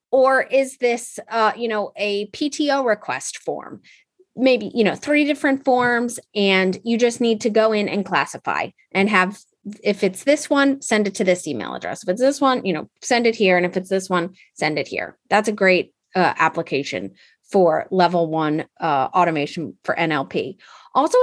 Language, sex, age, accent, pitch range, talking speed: English, female, 30-49, American, 190-245 Hz, 190 wpm